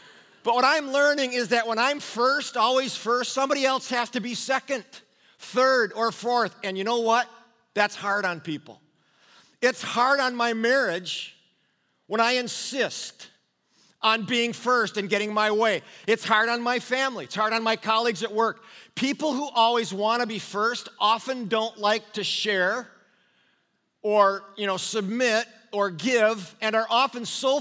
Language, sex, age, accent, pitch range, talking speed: English, male, 40-59, American, 205-245 Hz, 165 wpm